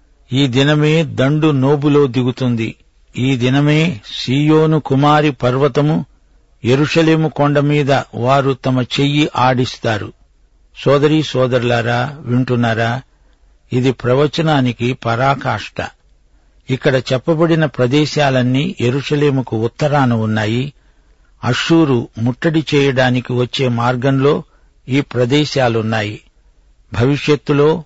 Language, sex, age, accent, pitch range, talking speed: Telugu, male, 60-79, native, 120-145 Hz, 80 wpm